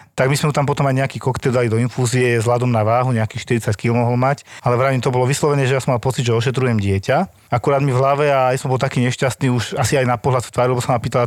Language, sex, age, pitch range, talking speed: Slovak, male, 40-59, 120-140 Hz, 290 wpm